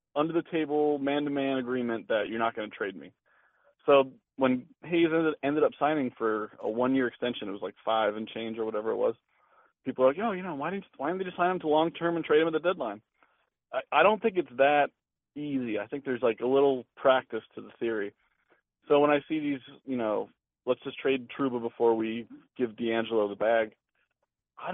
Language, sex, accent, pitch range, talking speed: English, male, American, 115-150 Hz, 215 wpm